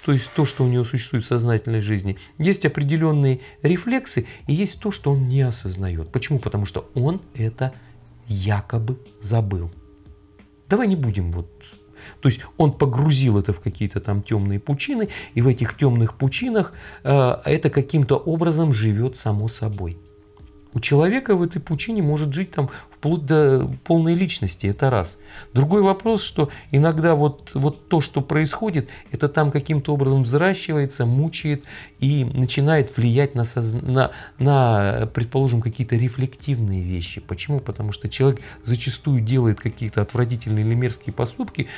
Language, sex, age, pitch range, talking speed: Russian, male, 40-59, 110-150 Hz, 150 wpm